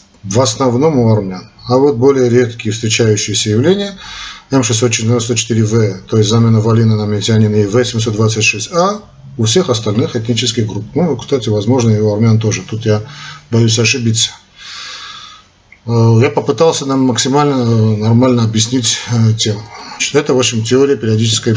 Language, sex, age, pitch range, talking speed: Russian, male, 40-59, 110-135 Hz, 130 wpm